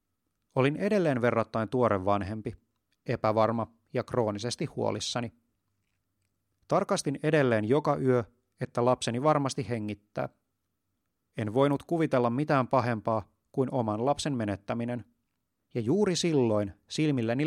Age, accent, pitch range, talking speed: 30-49, native, 105-135 Hz, 105 wpm